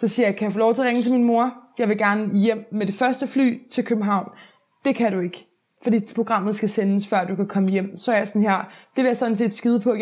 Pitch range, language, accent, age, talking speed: 195-220 Hz, Danish, native, 20-39, 295 wpm